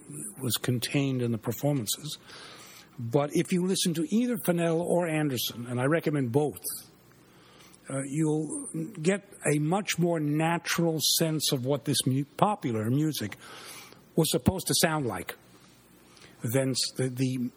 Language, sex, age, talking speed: English, male, 60-79, 135 wpm